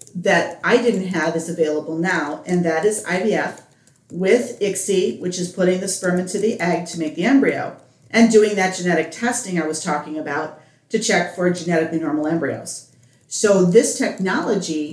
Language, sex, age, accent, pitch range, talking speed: English, female, 40-59, American, 160-205 Hz, 175 wpm